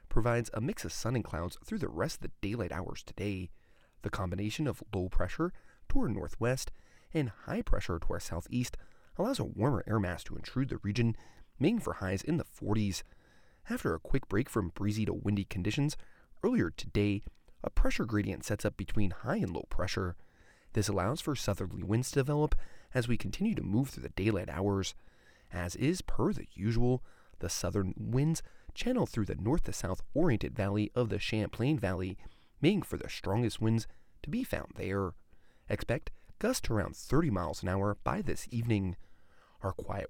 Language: English